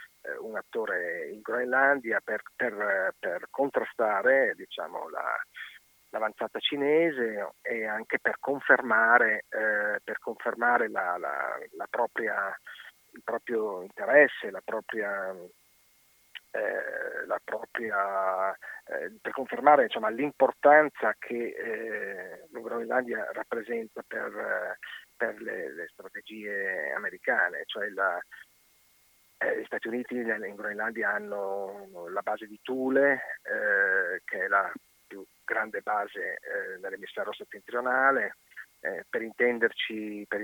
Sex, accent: male, native